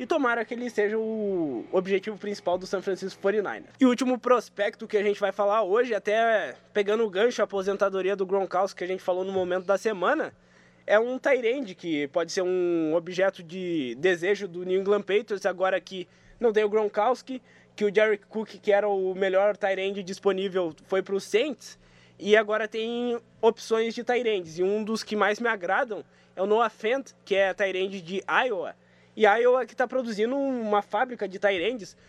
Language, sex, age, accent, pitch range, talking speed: Portuguese, male, 20-39, Brazilian, 190-225 Hz, 195 wpm